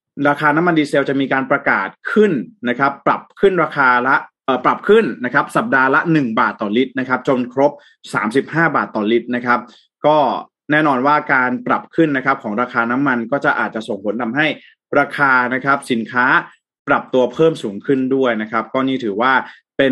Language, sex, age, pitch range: Thai, male, 20-39, 120-150 Hz